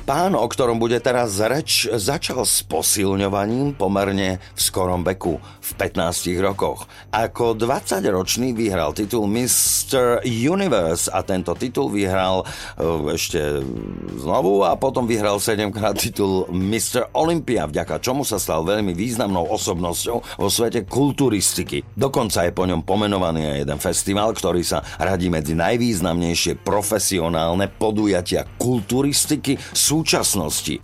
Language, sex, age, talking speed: Slovak, male, 50-69, 120 wpm